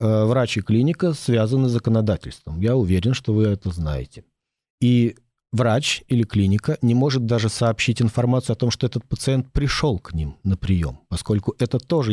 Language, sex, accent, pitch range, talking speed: Russian, male, native, 105-135 Hz, 170 wpm